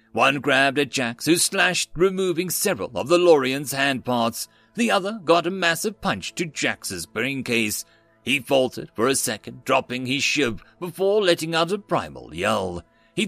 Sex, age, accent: male, 40-59, British